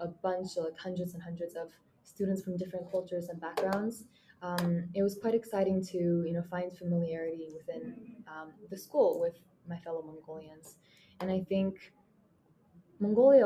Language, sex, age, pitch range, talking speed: English, female, 20-39, 170-195 Hz, 160 wpm